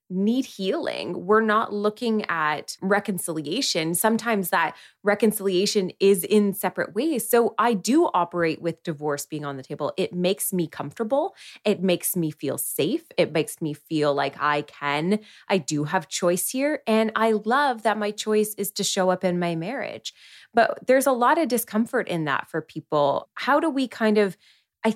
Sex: female